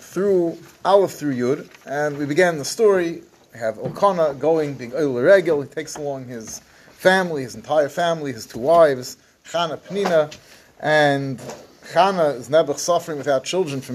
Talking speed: 155 wpm